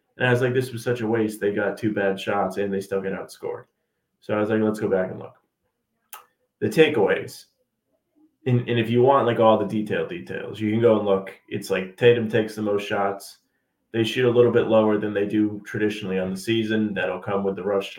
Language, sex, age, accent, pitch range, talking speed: English, male, 30-49, American, 100-120 Hz, 235 wpm